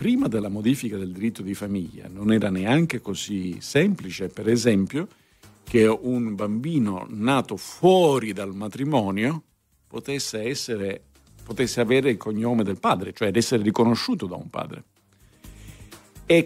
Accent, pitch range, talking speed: native, 100-135 Hz, 130 wpm